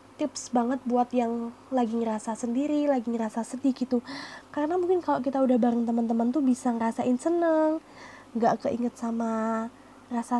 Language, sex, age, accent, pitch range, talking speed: Indonesian, female, 20-39, native, 230-275 Hz, 150 wpm